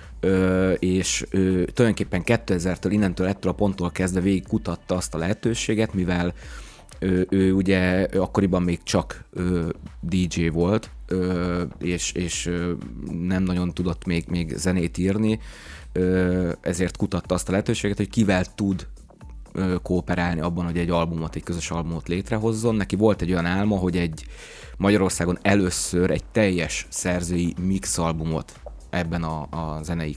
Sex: male